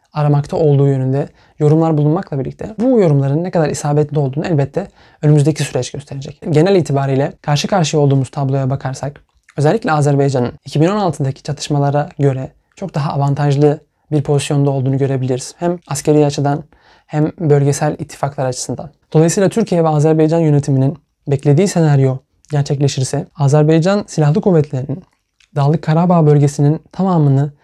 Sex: male